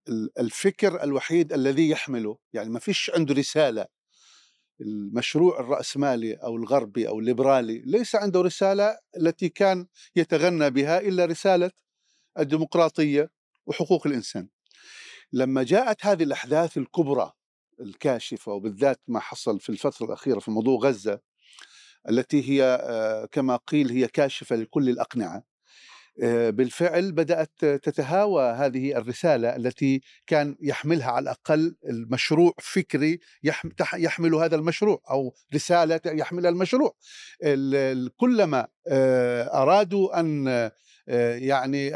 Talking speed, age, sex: 105 wpm, 50-69, male